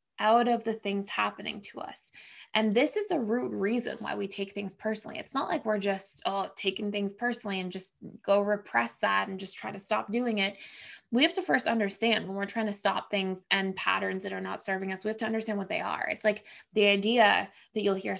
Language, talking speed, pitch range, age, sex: English, 235 wpm, 195-235 Hz, 20-39, female